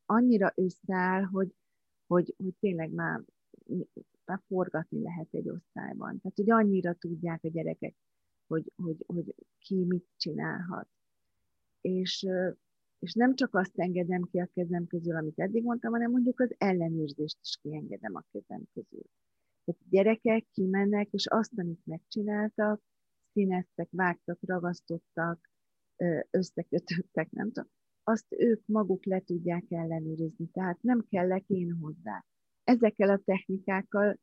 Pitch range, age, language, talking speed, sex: 170-200 Hz, 40-59, Hungarian, 130 wpm, female